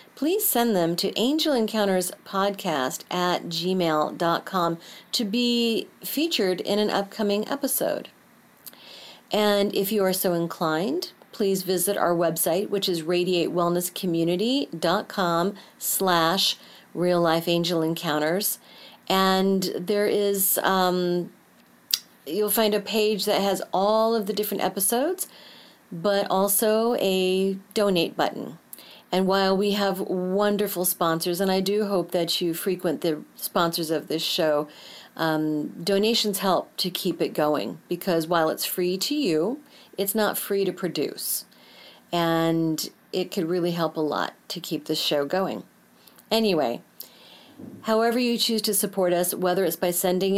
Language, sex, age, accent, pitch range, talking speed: English, female, 40-59, American, 170-205 Hz, 130 wpm